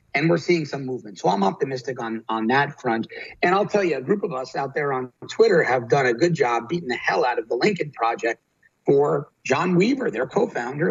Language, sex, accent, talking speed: English, male, American, 230 wpm